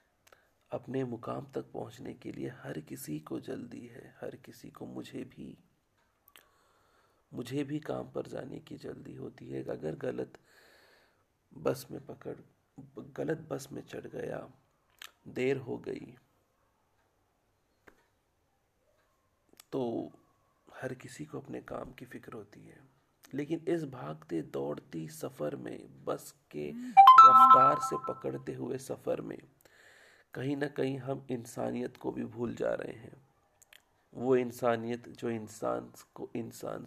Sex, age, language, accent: male, 40-59, Hindi, native